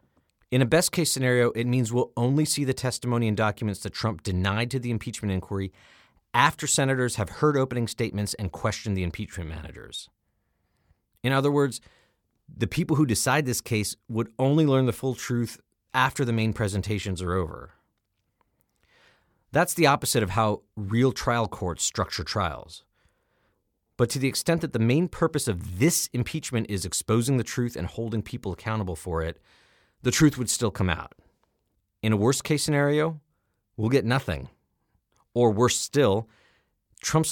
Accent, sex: American, male